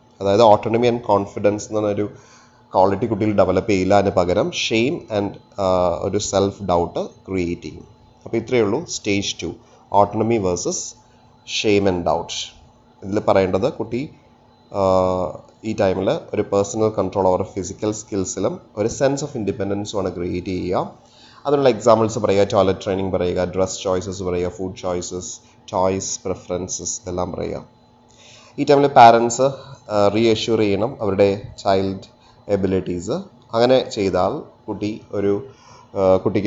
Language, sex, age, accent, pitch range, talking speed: English, male, 30-49, Indian, 95-120 Hz, 85 wpm